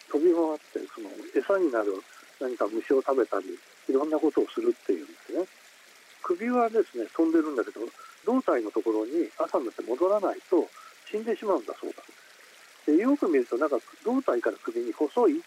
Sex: male